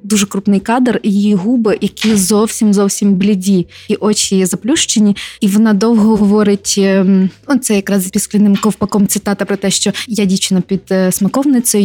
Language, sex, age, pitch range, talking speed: Ukrainian, female, 20-39, 190-215 Hz, 140 wpm